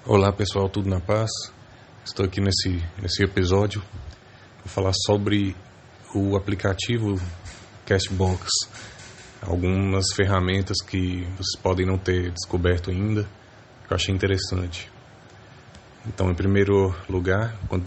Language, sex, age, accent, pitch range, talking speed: English, male, 20-39, Brazilian, 90-105 Hz, 115 wpm